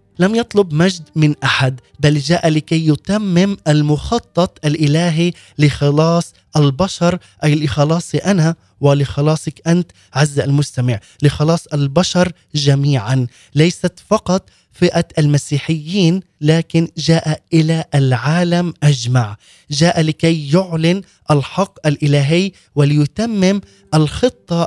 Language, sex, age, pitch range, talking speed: Arabic, male, 20-39, 145-175 Hz, 95 wpm